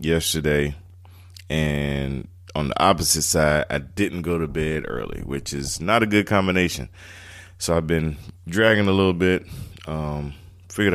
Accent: American